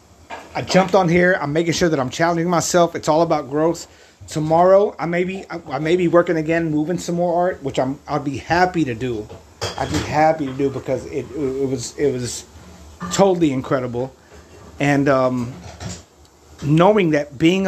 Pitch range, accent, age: 105-170 Hz, American, 30-49